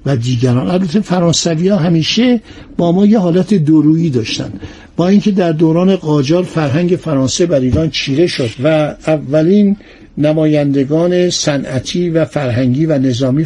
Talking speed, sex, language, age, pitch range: 140 wpm, male, Persian, 60-79, 135-175 Hz